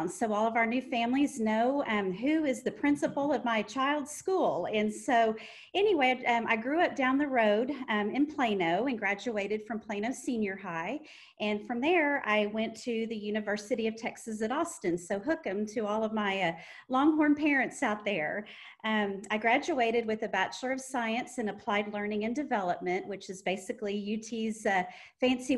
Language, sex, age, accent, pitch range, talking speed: English, female, 40-59, American, 210-255 Hz, 185 wpm